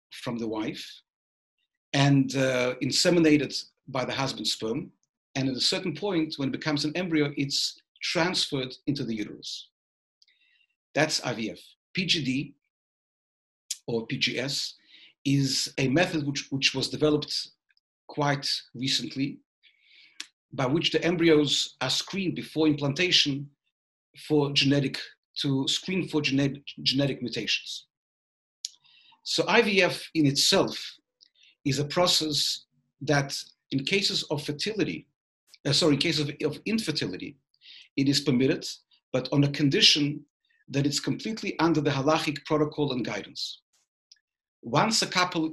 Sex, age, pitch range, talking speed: male, 50-69, 135-160 Hz, 120 wpm